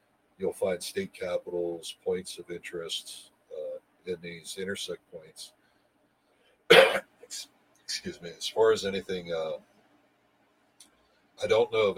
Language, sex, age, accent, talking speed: English, male, 60-79, American, 115 wpm